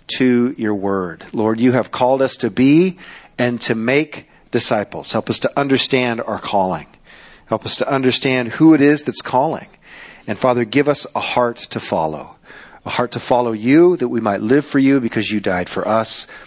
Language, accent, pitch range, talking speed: English, American, 110-155 Hz, 195 wpm